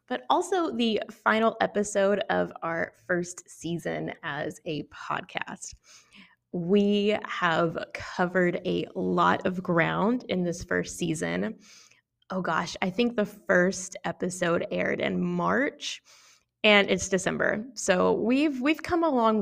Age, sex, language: 20-39, female, English